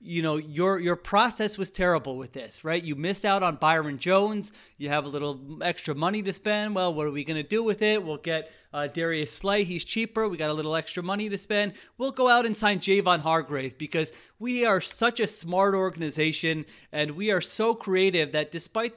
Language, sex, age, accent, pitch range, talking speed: English, male, 30-49, American, 155-200 Hz, 220 wpm